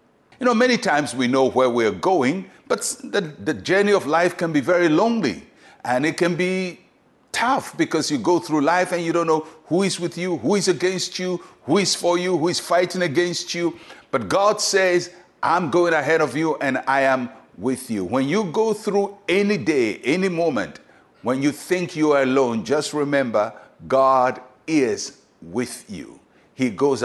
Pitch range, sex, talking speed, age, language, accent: 130-180 Hz, male, 190 wpm, 60-79, English, Nigerian